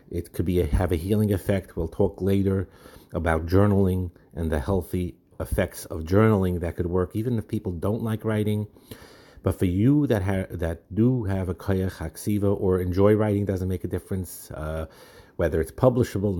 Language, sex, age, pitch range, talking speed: English, male, 50-69, 85-105 Hz, 185 wpm